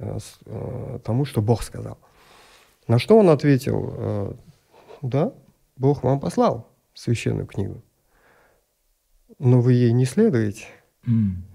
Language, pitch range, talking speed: Russian, 115-155 Hz, 100 wpm